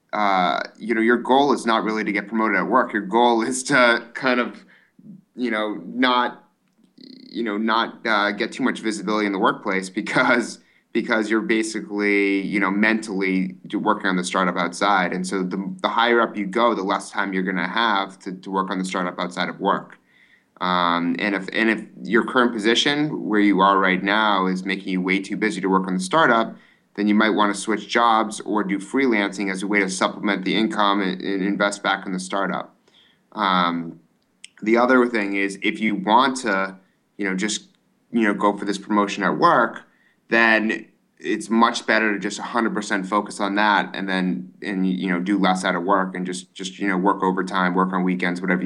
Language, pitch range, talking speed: English, 95-110 Hz, 205 wpm